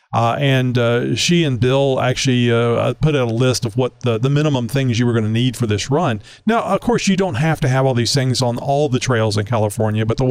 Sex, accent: male, American